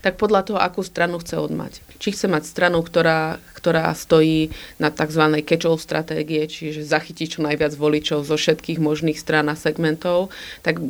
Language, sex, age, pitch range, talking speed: Slovak, female, 30-49, 150-165 Hz, 165 wpm